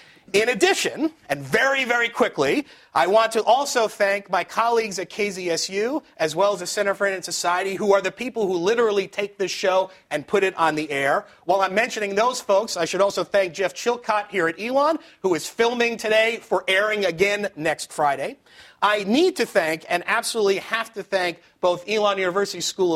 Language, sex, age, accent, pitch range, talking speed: English, male, 30-49, American, 170-220 Hz, 195 wpm